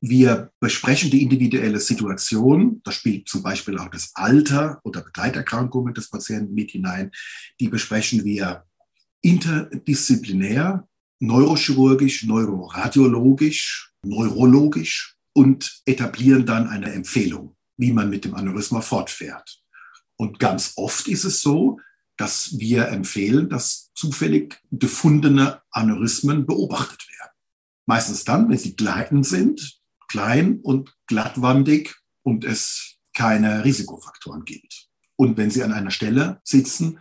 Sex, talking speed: male, 115 wpm